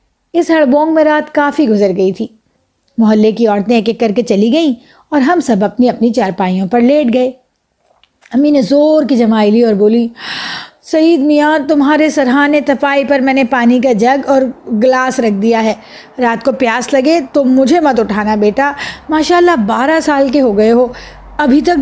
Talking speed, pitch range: 195 wpm, 225-290 Hz